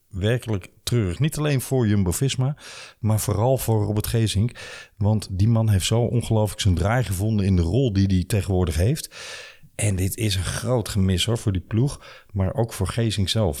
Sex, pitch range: male, 95-120 Hz